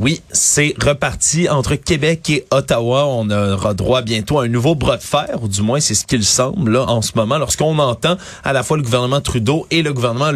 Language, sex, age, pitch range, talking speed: French, male, 30-49, 110-145 Hz, 225 wpm